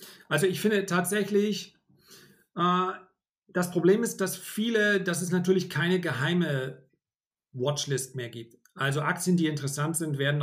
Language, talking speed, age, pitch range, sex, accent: German, 130 wpm, 40-59, 140-180 Hz, male, German